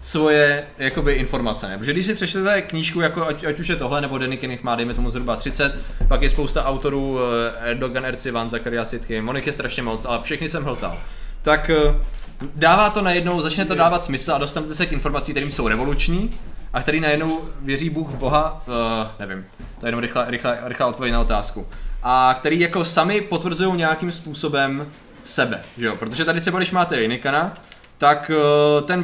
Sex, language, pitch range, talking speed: male, Czech, 130-160 Hz, 180 wpm